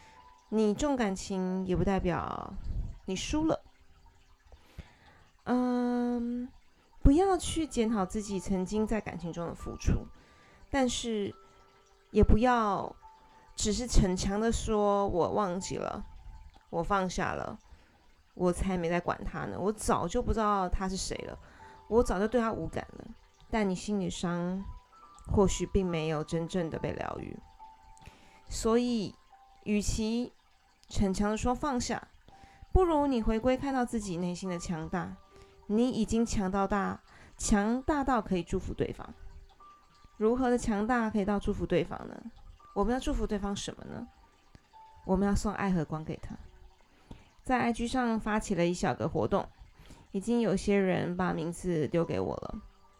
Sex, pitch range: female, 180-240 Hz